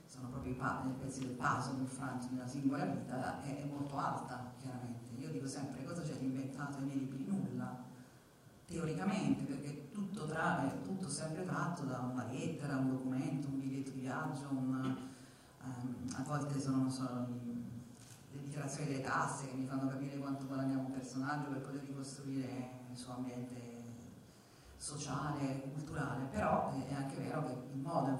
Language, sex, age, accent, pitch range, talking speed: Italian, female, 40-59, native, 130-160 Hz, 165 wpm